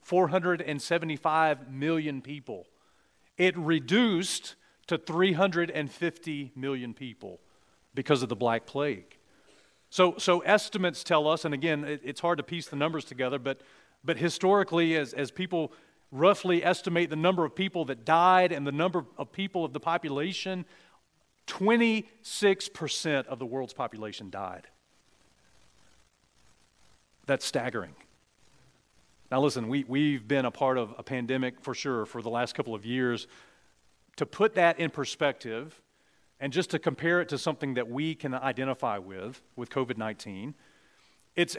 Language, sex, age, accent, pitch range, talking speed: English, male, 40-59, American, 120-165 Hz, 140 wpm